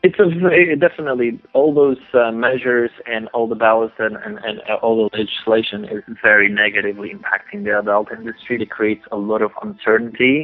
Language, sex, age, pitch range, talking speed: English, male, 30-49, 105-140 Hz, 190 wpm